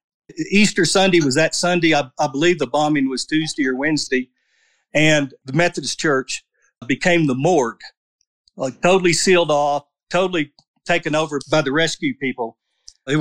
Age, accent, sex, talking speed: 50-69, American, male, 150 wpm